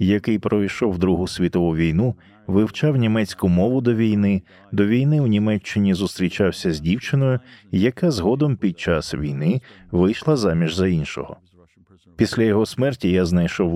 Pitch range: 90-120 Hz